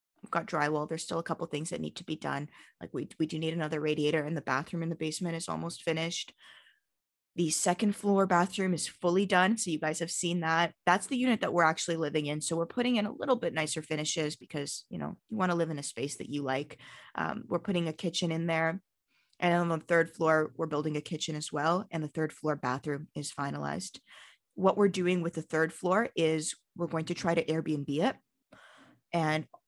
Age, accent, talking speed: 20-39, American, 230 wpm